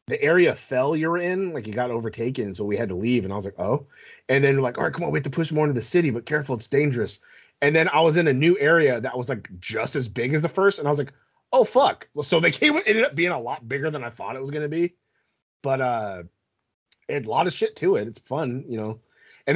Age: 30-49